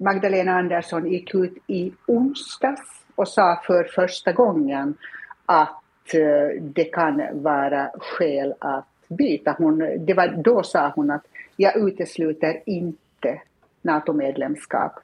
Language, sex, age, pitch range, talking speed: Swedish, female, 60-79, 150-195 Hz, 105 wpm